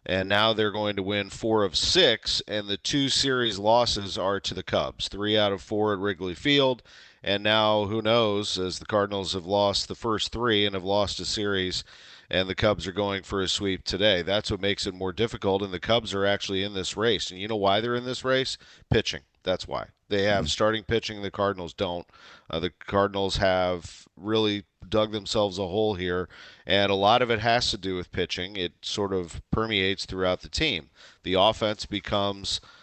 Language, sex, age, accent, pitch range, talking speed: English, male, 40-59, American, 90-105 Hz, 205 wpm